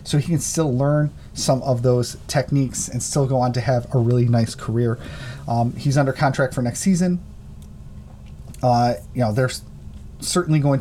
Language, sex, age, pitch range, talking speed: English, male, 30-49, 125-145 Hz, 185 wpm